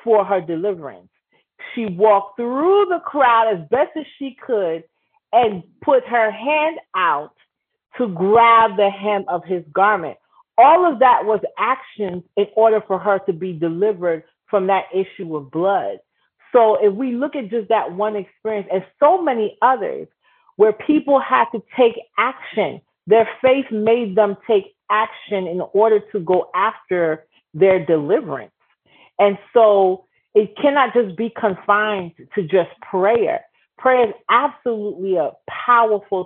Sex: female